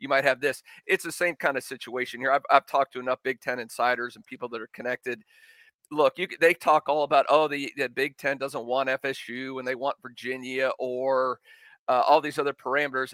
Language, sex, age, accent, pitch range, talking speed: English, male, 50-69, American, 125-145 Hz, 220 wpm